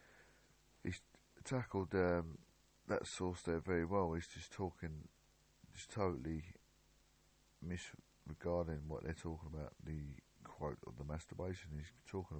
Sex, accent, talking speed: male, British, 110 wpm